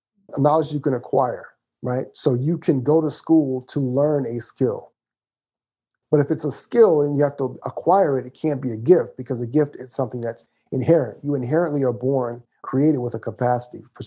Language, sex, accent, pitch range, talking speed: English, male, American, 125-150 Hz, 200 wpm